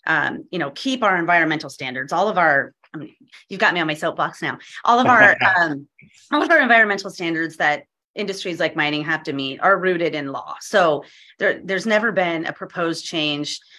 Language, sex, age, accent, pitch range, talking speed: English, female, 30-49, American, 150-195 Hz, 200 wpm